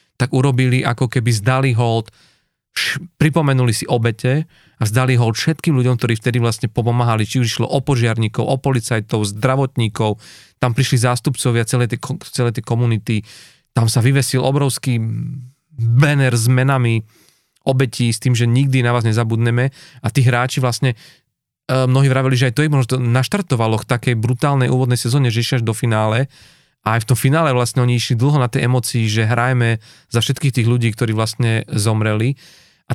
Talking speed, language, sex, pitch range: 165 wpm, Slovak, male, 115-130 Hz